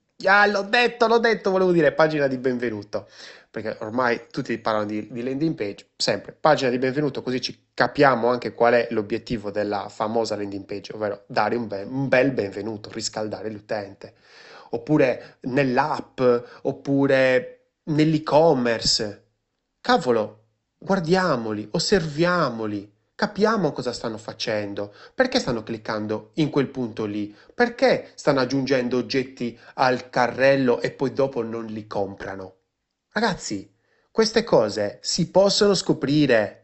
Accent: native